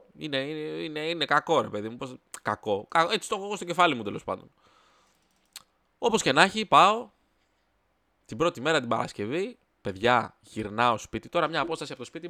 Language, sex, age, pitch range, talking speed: Greek, male, 20-39, 110-160 Hz, 170 wpm